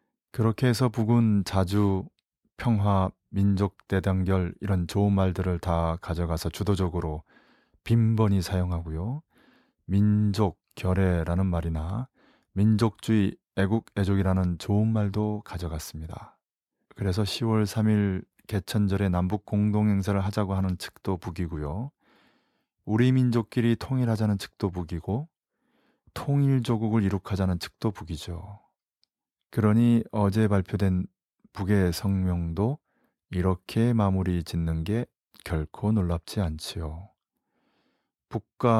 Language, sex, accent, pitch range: Korean, male, native, 90-110 Hz